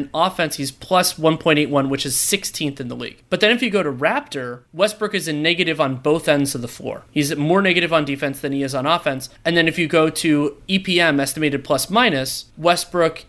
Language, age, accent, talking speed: English, 30-49, American, 220 wpm